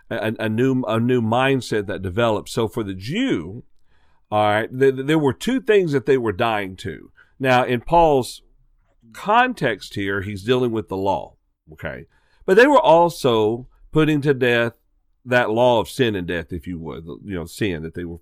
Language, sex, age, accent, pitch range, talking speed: English, male, 50-69, American, 95-135 Hz, 185 wpm